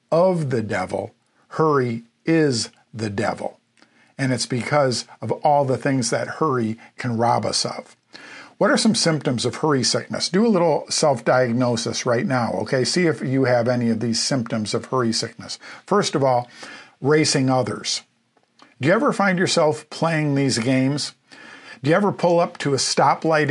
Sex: male